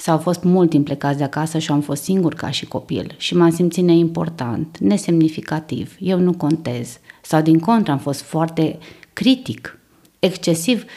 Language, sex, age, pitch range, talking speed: Romanian, female, 20-39, 145-180 Hz, 165 wpm